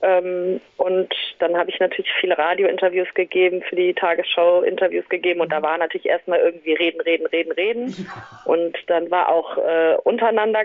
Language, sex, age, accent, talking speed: German, female, 30-49, German, 160 wpm